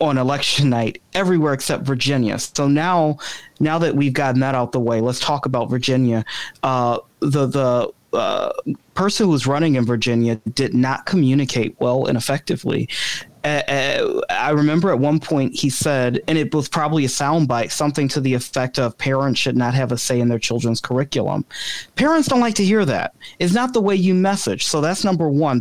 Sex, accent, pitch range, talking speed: male, American, 130-165 Hz, 190 wpm